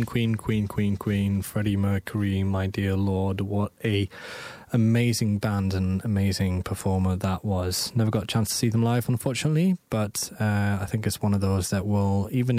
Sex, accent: male, British